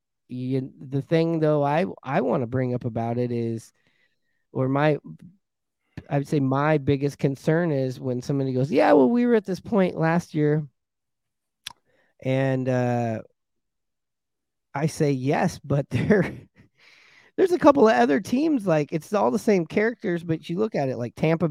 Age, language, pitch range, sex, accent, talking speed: 30-49, English, 125-165 Hz, male, American, 165 wpm